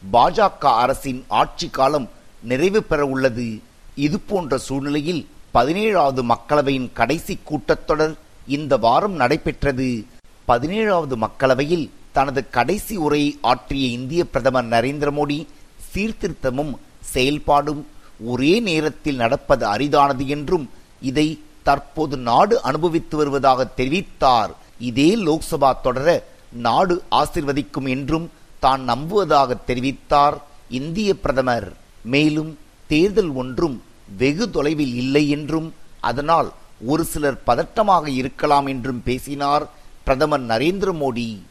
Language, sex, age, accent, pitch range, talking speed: Tamil, male, 50-69, native, 130-155 Hz, 95 wpm